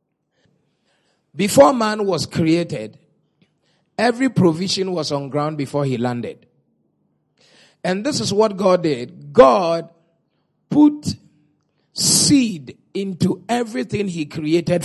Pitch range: 165-220 Hz